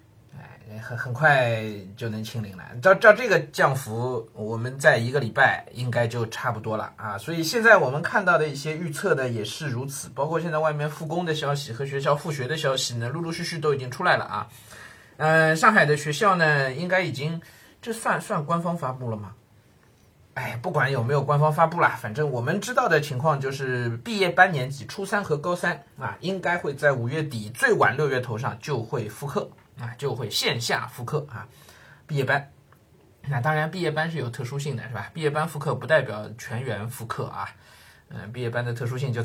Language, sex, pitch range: Chinese, male, 120-155 Hz